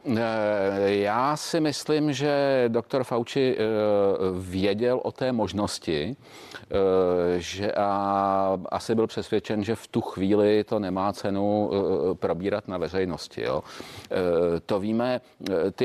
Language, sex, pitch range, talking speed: Czech, male, 90-115 Hz, 110 wpm